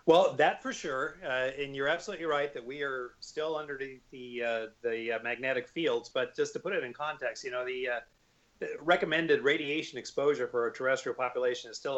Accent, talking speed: American, 205 wpm